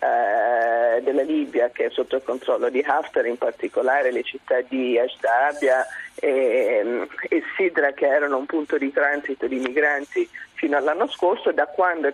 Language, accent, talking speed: Italian, native, 155 wpm